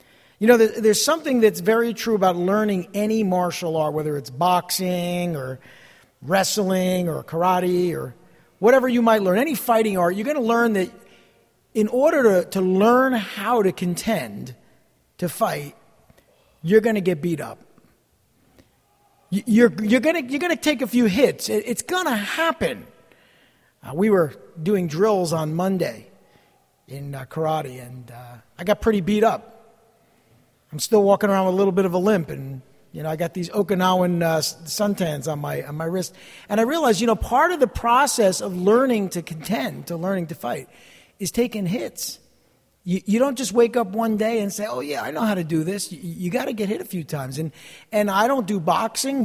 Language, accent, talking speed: English, American, 190 wpm